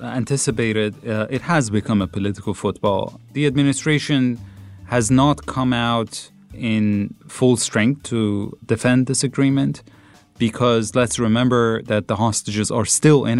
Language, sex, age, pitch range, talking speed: English, male, 30-49, 100-125 Hz, 135 wpm